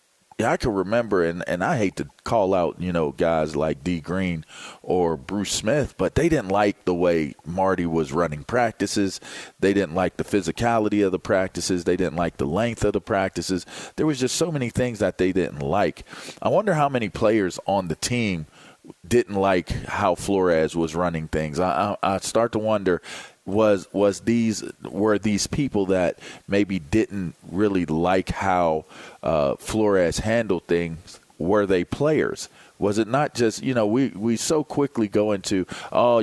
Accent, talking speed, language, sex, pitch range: American, 180 wpm, English, male, 85-110 Hz